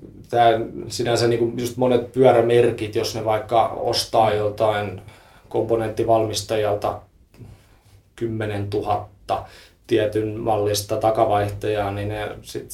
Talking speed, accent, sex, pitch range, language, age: 100 wpm, native, male, 105-115 Hz, Finnish, 20-39